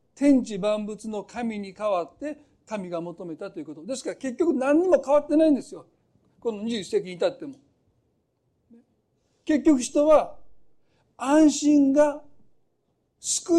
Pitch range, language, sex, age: 200-280 Hz, Japanese, male, 60-79